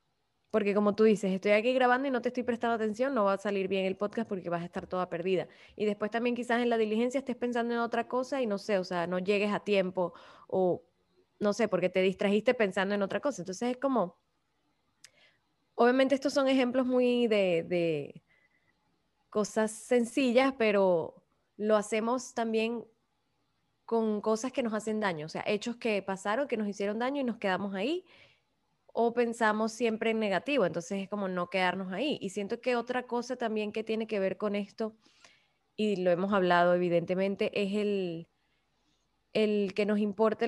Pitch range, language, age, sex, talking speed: 195-235 Hz, Spanish, 10-29, female, 185 wpm